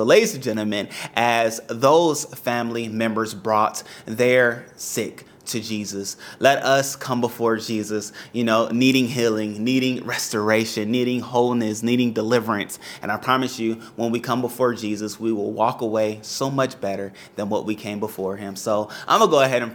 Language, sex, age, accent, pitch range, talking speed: English, male, 30-49, American, 105-120 Hz, 170 wpm